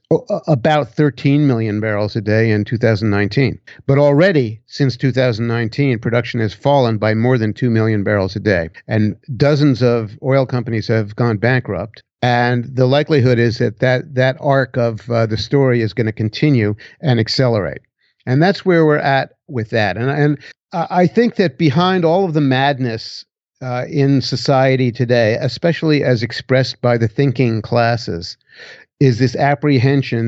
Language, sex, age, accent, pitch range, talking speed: English, male, 50-69, American, 115-140 Hz, 155 wpm